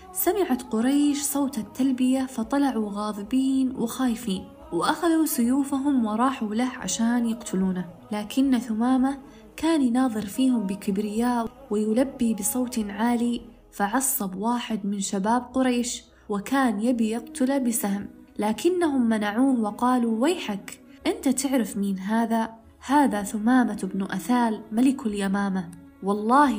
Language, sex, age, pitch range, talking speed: Arabic, female, 20-39, 210-265 Hz, 105 wpm